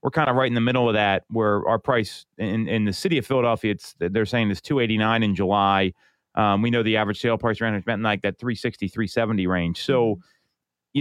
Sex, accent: male, American